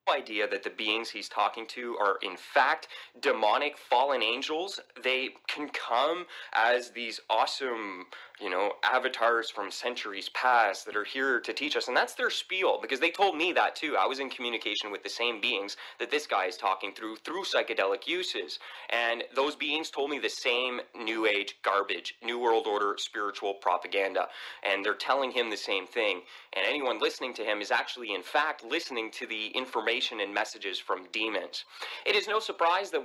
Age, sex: 30-49, male